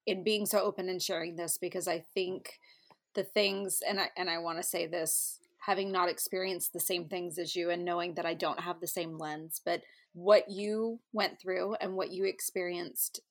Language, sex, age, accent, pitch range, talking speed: English, female, 20-39, American, 180-210 Hz, 200 wpm